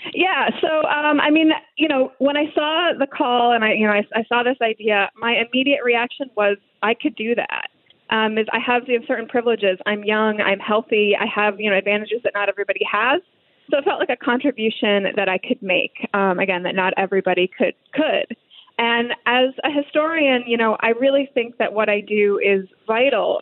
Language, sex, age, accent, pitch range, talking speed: English, female, 20-39, American, 195-245 Hz, 205 wpm